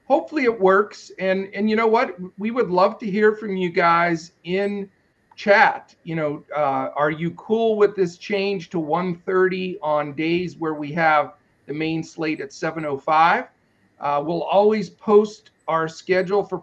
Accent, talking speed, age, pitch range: American, 160 wpm, 50-69, 155-205 Hz